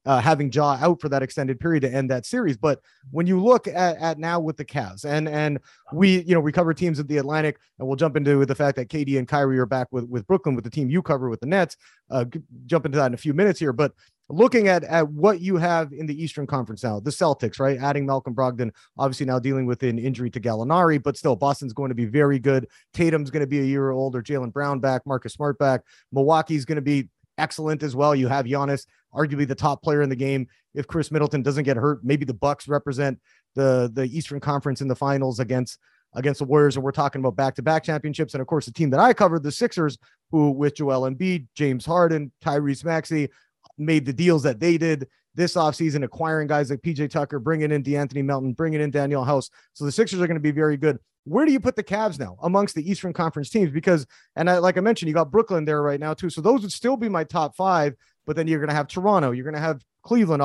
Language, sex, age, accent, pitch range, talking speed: English, male, 30-49, American, 135-165 Hz, 245 wpm